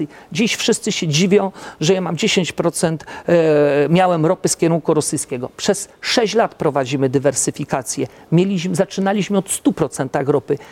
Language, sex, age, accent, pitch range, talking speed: Polish, male, 50-69, native, 155-195 Hz, 135 wpm